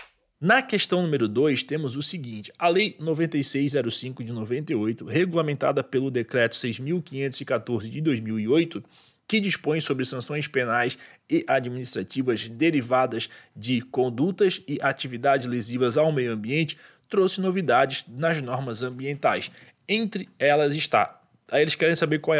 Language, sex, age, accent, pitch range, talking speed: Portuguese, male, 20-39, Brazilian, 125-165 Hz, 125 wpm